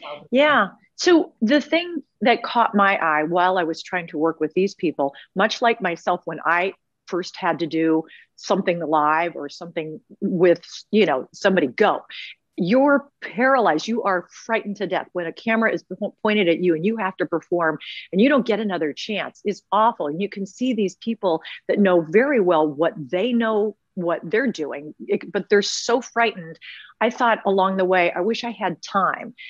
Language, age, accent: English, 40-59, American